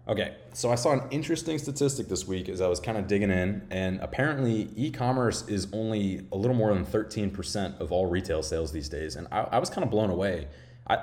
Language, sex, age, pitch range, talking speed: English, male, 20-39, 90-120 Hz, 230 wpm